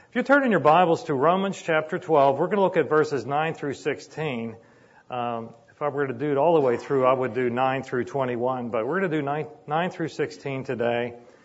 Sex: male